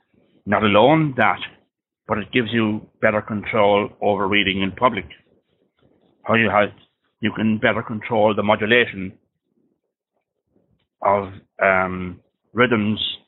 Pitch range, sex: 100-115 Hz, male